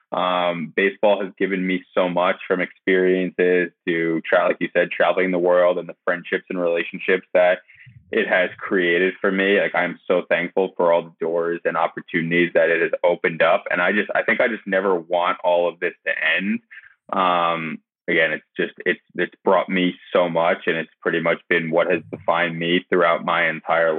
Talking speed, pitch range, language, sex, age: 200 wpm, 85-95 Hz, English, male, 20-39